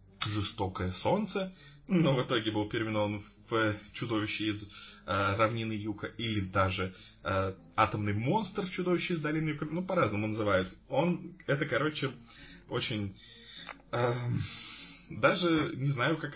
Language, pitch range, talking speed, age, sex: Russian, 105-140 Hz, 120 wpm, 20-39, male